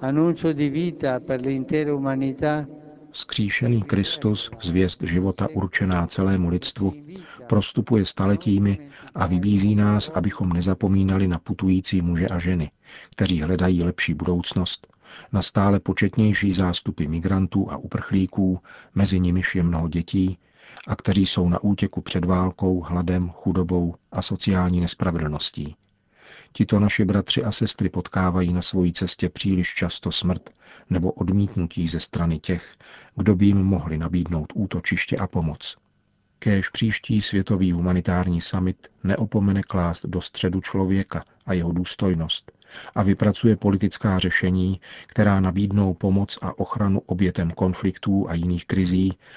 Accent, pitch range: native, 90-100 Hz